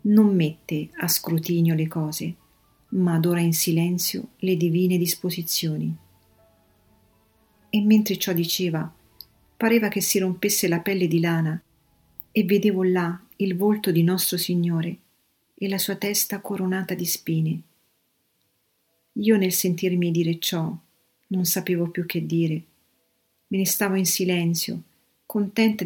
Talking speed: 130 wpm